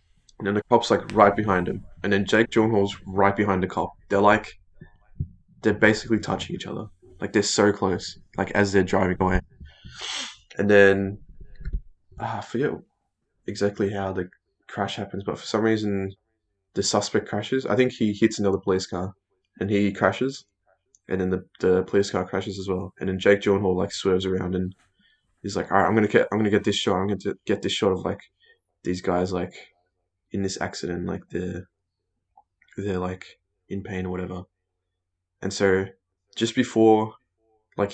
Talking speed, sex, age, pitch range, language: 180 wpm, male, 20-39, 95-105 Hz, English